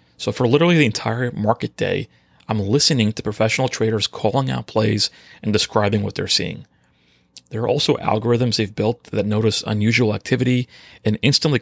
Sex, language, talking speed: male, English, 165 wpm